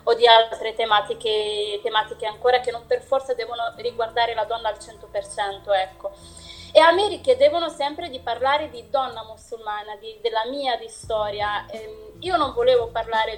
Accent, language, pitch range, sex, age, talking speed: native, Italian, 235-290 Hz, female, 20-39, 165 wpm